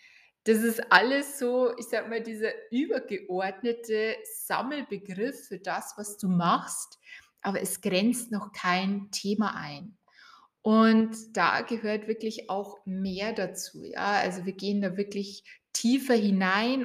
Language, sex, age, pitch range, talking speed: German, female, 20-39, 195-230 Hz, 130 wpm